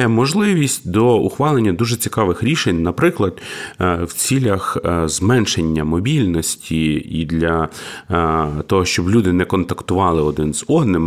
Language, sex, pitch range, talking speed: Ukrainian, male, 85-115 Hz, 115 wpm